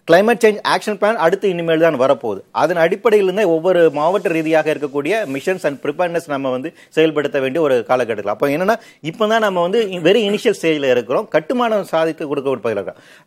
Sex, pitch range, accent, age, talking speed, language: male, 135-200 Hz, native, 30-49, 165 wpm, Tamil